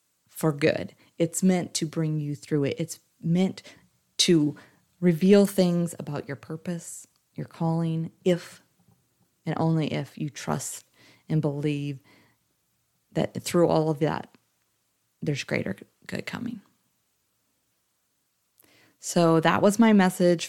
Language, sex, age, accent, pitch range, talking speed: English, female, 30-49, American, 150-175 Hz, 120 wpm